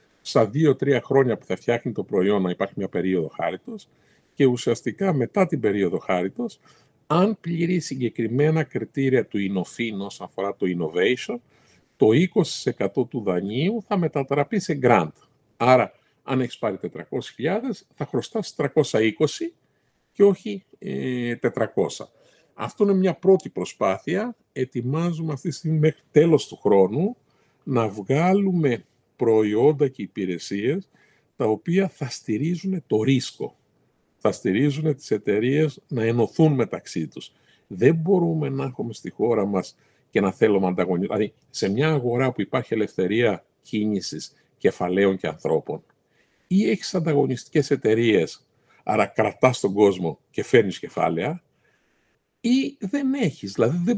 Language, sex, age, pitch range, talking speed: Greek, male, 50-69, 115-170 Hz, 130 wpm